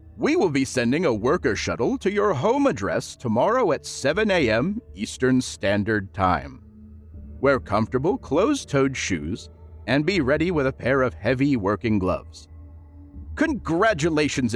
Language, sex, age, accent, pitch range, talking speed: English, male, 40-59, American, 80-135 Hz, 135 wpm